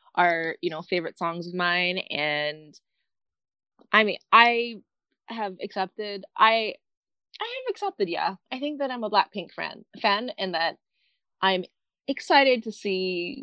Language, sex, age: English, female, 20-39